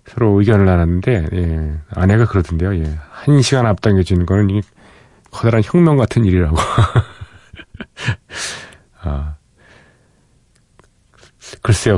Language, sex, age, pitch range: Korean, male, 40-59, 90-115 Hz